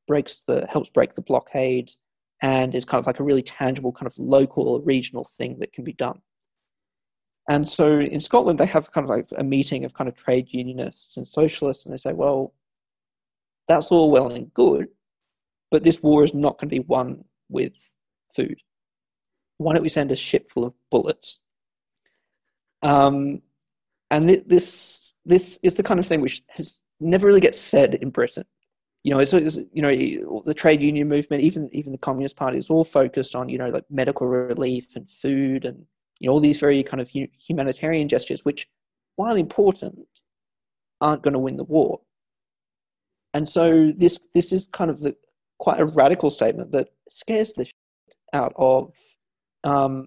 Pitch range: 130-155 Hz